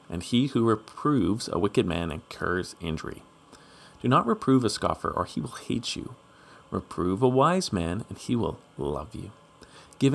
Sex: male